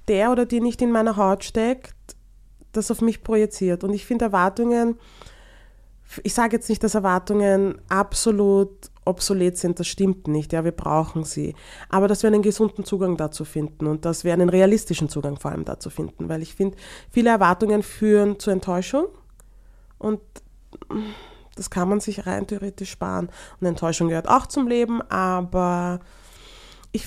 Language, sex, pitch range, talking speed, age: German, female, 180-230 Hz, 165 wpm, 20-39